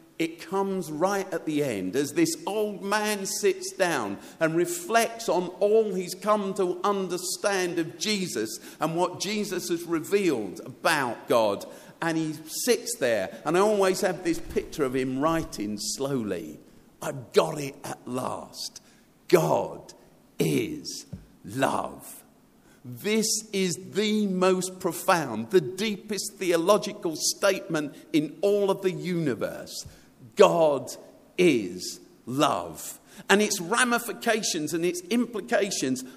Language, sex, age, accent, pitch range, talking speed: English, male, 50-69, British, 165-215 Hz, 125 wpm